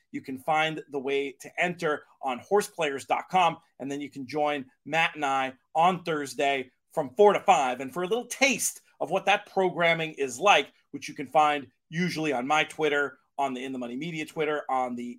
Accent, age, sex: American, 40-59, male